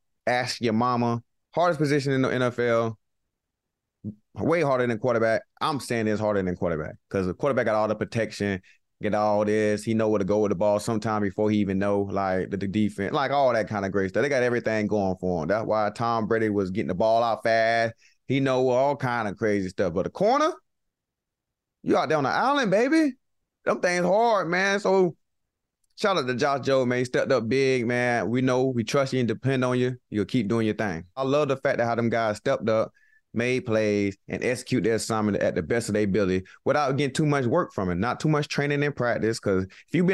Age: 20-39